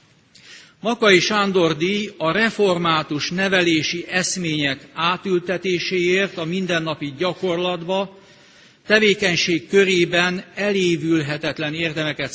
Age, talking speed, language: 60-79, 75 wpm, Hungarian